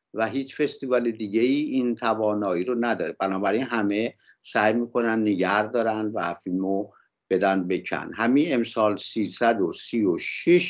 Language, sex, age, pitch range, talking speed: Persian, male, 60-79, 105-125 Hz, 130 wpm